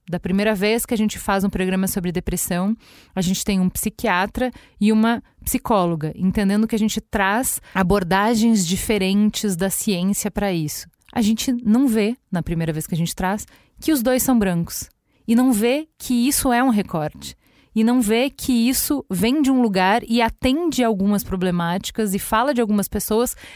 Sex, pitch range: female, 185-240 Hz